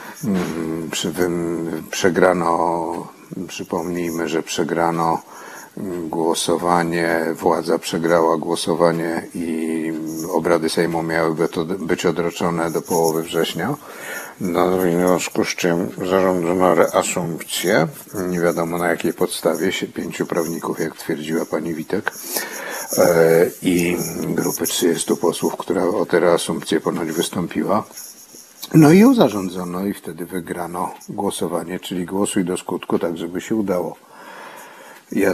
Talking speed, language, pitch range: 110 wpm, Polish, 85-90 Hz